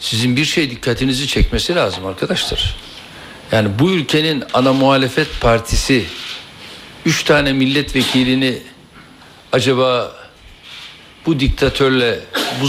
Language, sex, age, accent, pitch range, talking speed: Turkish, male, 60-79, native, 115-150 Hz, 95 wpm